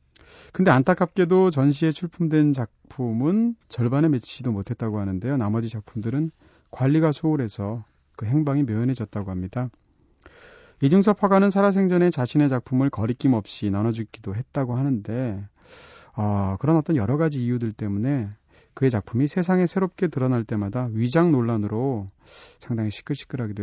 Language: Korean